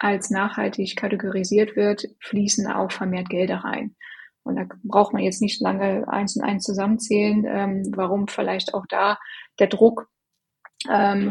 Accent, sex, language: German, female, German